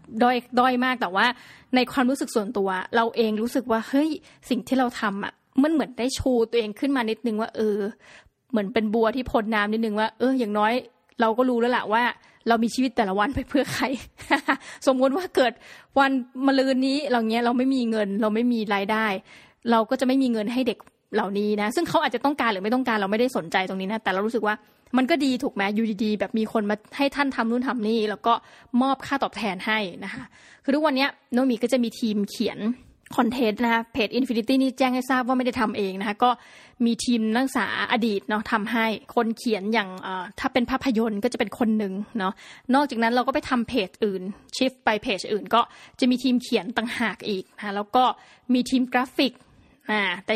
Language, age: Thai, 20-39